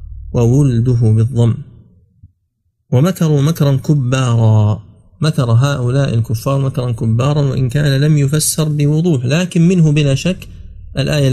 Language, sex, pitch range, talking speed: Arabic, male, 105-130 Hz, 105 wpm